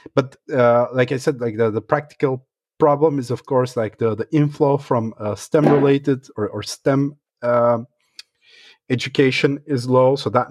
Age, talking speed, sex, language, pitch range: 30-49, 170 wpm, male, English, 110-150 Hz